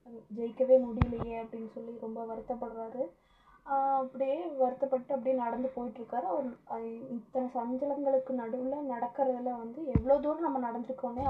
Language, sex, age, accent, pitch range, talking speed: Tamil, female, 20-39, native, 230-270 Hz, 110 wpm